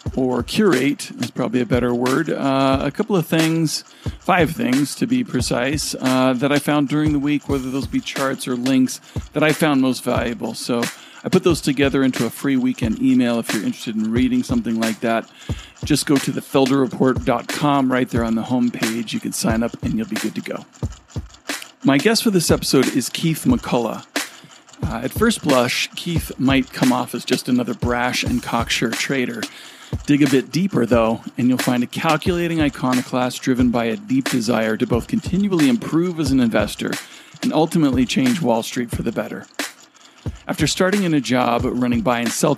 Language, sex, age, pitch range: English, male, 40-59, 120-150 Hz